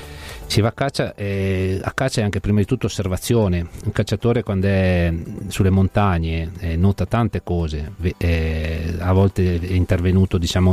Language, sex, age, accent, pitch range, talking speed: Italian, male, 40-59, native, 85-100 Hz, 160 wpm